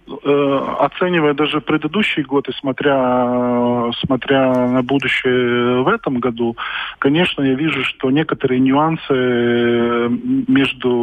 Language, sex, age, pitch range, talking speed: Russian, male, 20-39, 115-135 Hz, 105 wpm